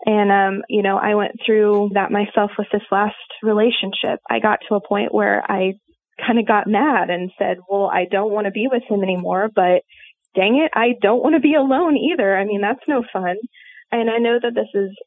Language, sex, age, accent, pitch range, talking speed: English, female, 20-39, American, 195-230 Hz, 225 wpm